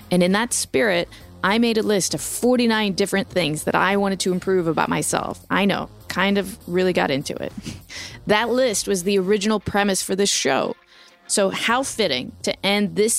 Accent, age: American, 20-39